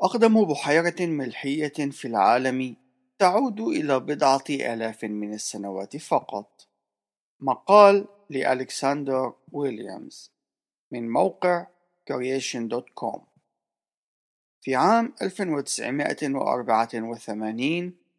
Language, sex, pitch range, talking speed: Arabic, male, 125-170 Hz, 70 wpm